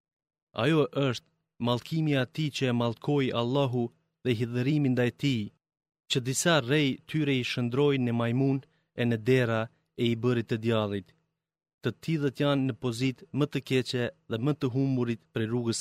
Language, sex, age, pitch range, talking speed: Greek, male, 30-49, 120-150 Hz, 155 wpm